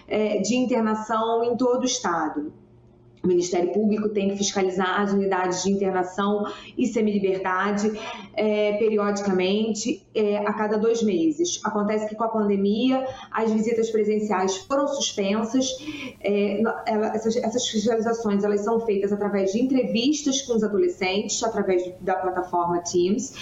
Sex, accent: female, Brazilian